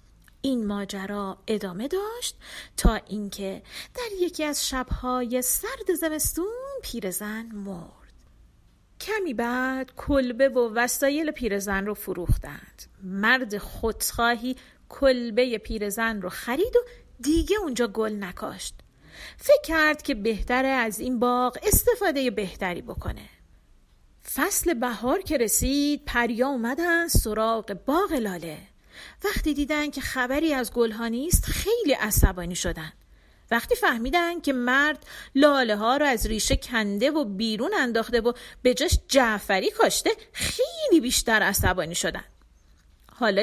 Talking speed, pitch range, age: 115 wpm, 215-290 Hz, 40-59